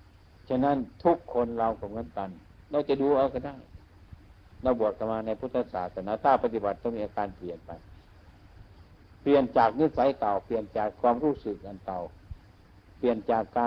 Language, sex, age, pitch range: Thai, male, 60-79, 90-120 Hz